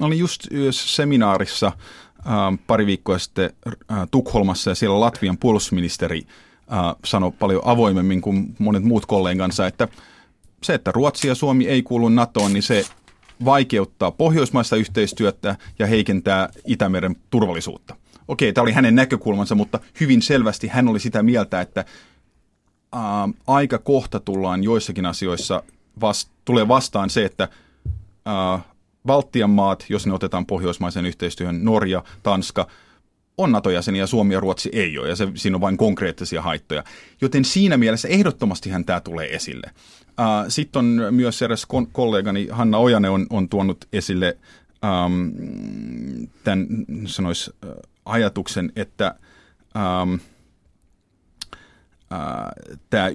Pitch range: 95-120 Hz